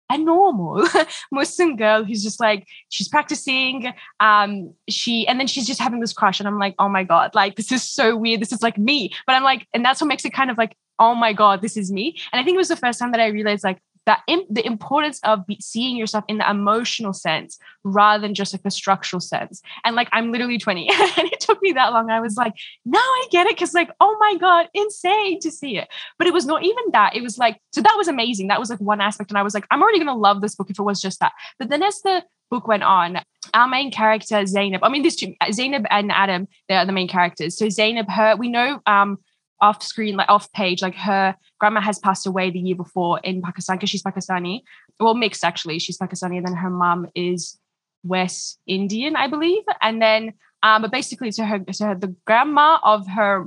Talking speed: 240 wpm